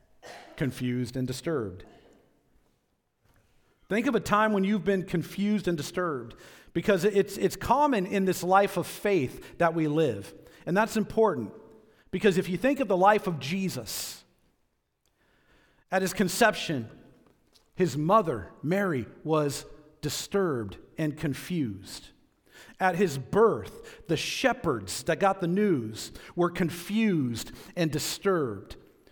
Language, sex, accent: English, male, American